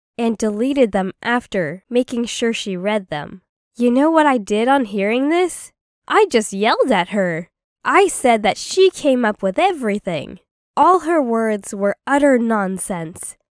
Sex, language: female, English